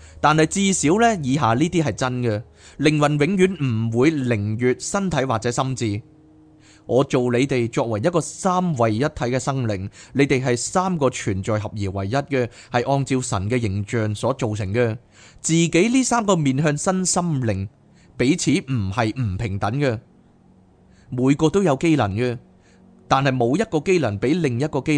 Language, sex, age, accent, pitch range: Chinese, male, 20-39, native, 110-155 Hz